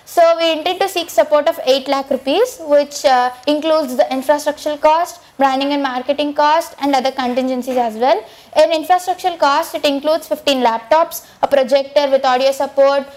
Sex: female